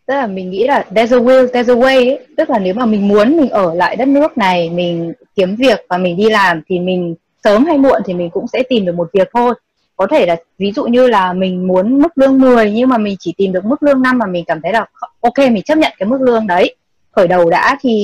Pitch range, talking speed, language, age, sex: 185-245 Hz, 275 wpm, Vietnamese, 20-39, female